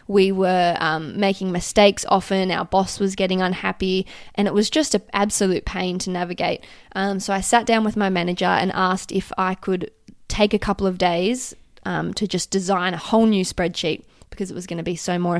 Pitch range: 180-220 Hz